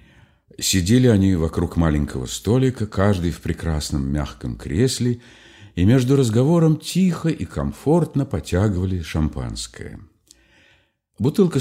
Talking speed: 100 wpm